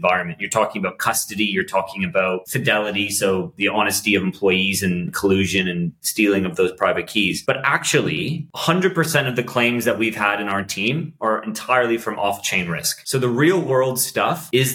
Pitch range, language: 105-125 Hz, English